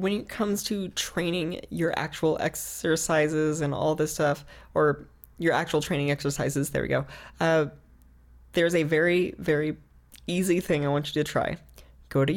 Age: 20-39